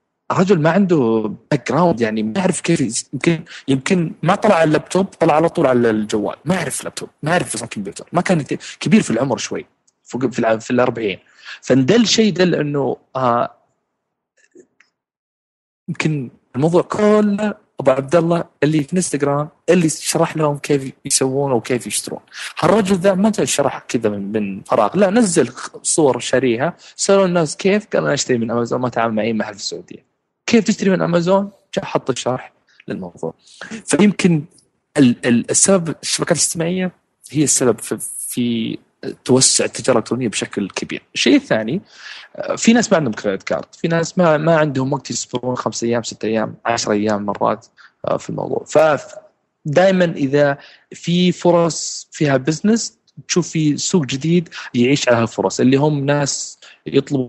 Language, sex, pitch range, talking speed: Arabic, male, 125-185 Hz, 150 wpm